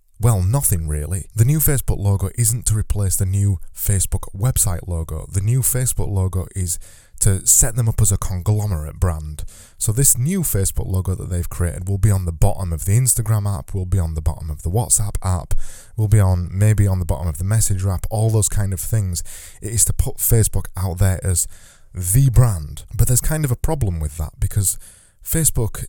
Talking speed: 210 wpm